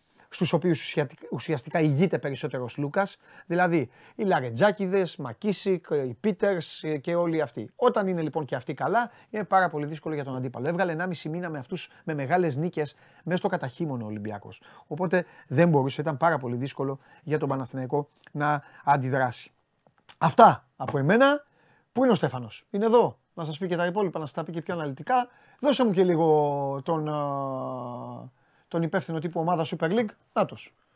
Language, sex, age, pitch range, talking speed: Greek, male, 30-49, 150-215 Hz, 165 wpm